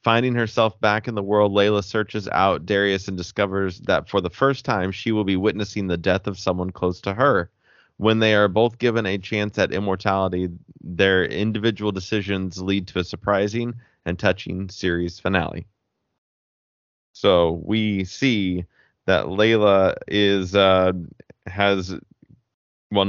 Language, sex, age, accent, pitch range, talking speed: English, male, 20-39, American, 90-105 Hz, 150 wpm